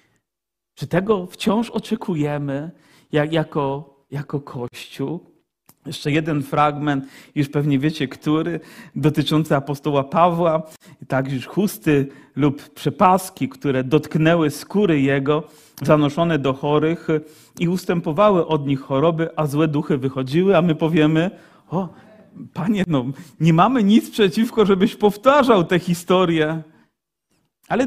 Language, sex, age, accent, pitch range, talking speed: Polish, male, 40-59, native, 140-170 Hz, 110 wpm